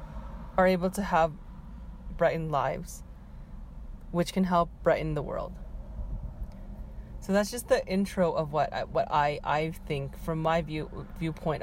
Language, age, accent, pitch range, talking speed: English, 30-49, American, 155-190 Hz, 145 wpm